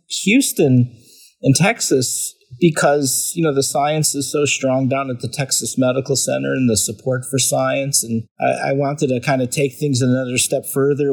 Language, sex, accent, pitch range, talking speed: English, male, American, 120-140 Hz, 185 wpm